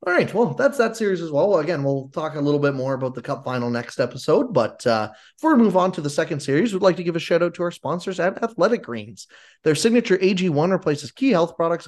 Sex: male